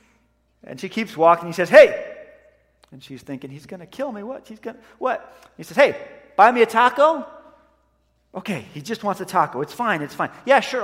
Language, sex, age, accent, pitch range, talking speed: English, male, 30-49, American, 180-250 Hz, 210 wpm